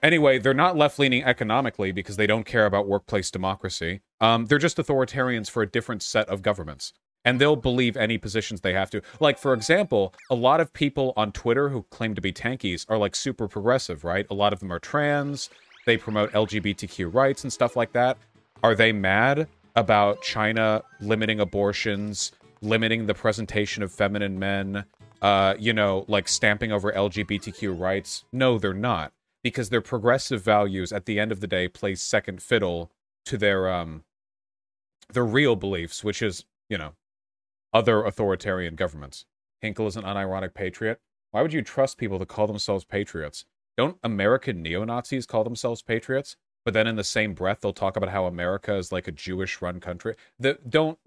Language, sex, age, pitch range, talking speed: English, male, 30-49, 100-120 Hz, 175 wpm